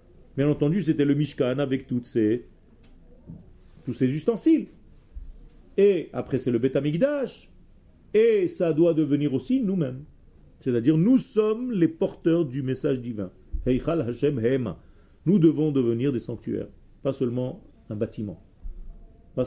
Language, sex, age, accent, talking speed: French, male, 40-59, French, 125 wpm